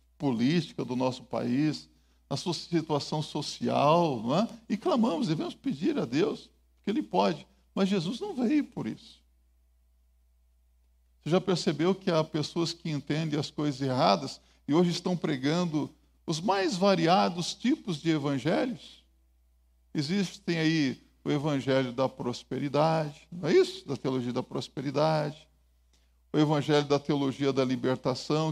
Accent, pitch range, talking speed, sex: Brazilian, 120-180 Hz, 135 wpm, male